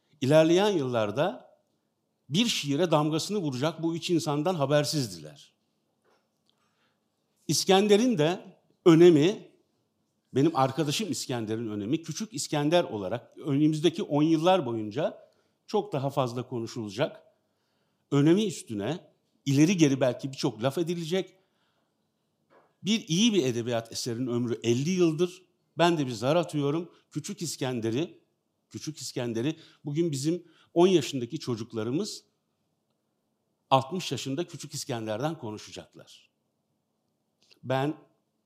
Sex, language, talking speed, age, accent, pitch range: male, Turkish, 100 wpm, 60-79, native, 125-175 Hz